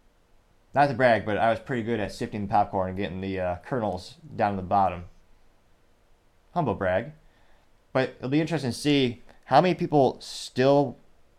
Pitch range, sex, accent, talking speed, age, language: 105-130 Hz, male, American, 175 wpm, 20-39, English